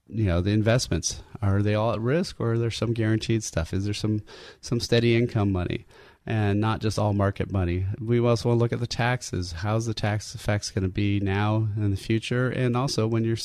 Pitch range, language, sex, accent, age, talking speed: 100-120 Hz, English, male, American, 30-49, 230 wpm